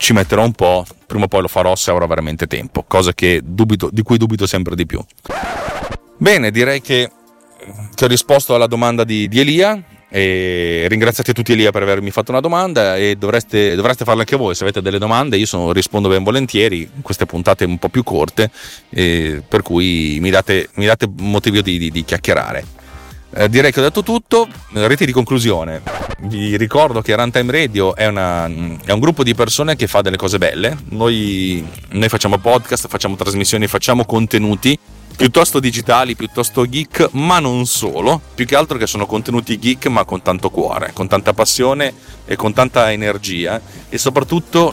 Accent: native